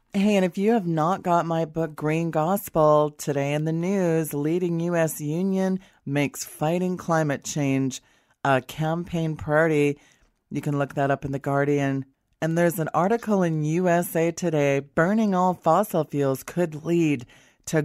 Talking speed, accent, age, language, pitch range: 160 wpm, American, 30-49, English, 145-170 Hz